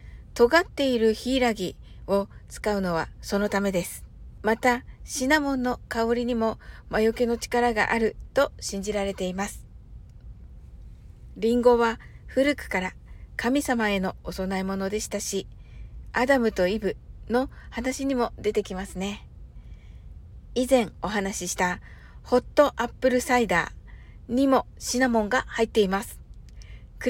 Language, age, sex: Japanese, 60-79, female